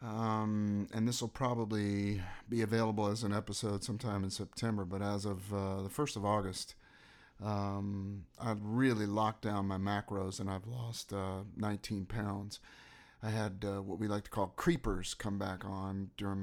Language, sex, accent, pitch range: English, male, American, 100-120 Hz